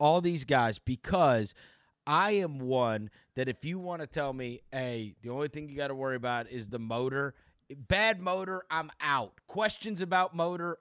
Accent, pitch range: American, 125-185 Hz